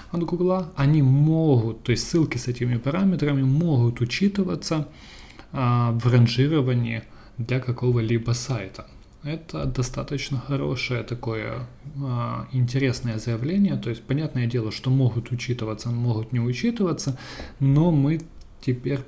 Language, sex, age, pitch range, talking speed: Russian, male, 20-39, 115-140 Hz, 120 wpm